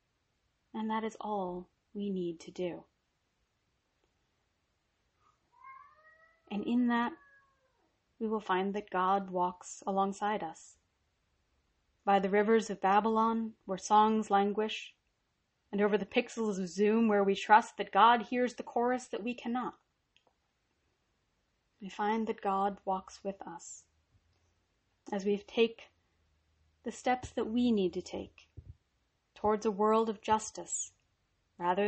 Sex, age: female, 30-49